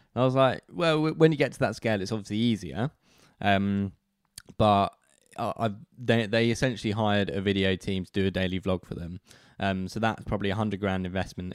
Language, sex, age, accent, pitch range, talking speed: English, male, 10-29, British, 95-115 Hz, 195 wpm